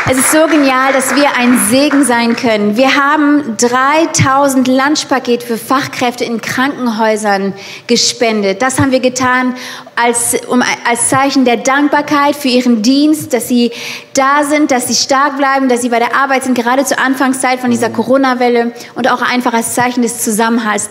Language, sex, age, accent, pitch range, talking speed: German, female, 20-39, German, 235-270 Hz, 170 wpm